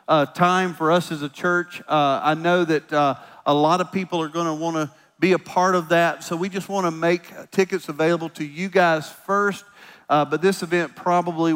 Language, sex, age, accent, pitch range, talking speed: English, male, 40-59, American, 150-180 Hz, 220 wpm